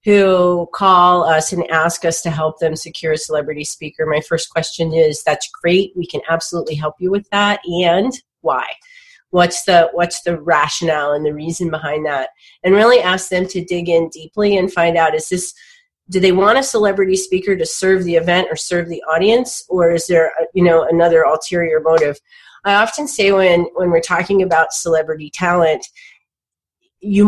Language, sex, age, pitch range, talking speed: English, female, 30-49, 160-190 Hz, 185 wpm